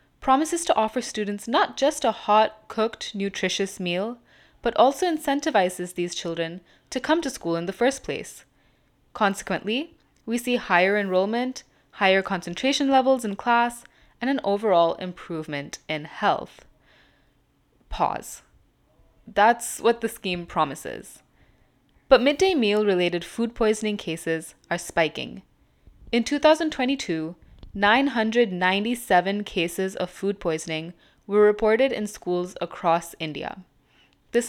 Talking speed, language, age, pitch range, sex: 120 wpm, English, 10-29, 175-240 Hz, female